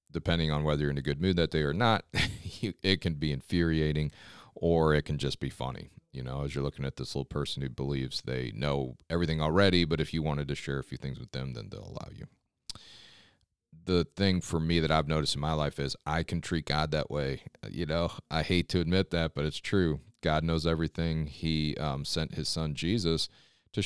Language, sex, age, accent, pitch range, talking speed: English, male, 40-59, American, 75-90 Hz, 225 wpm